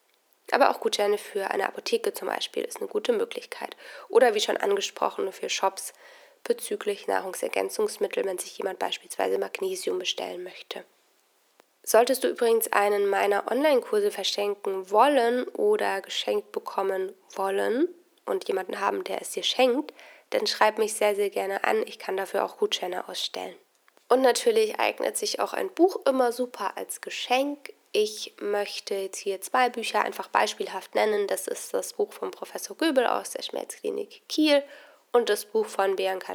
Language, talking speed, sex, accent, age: German, 155 wpm, female, German, 20-39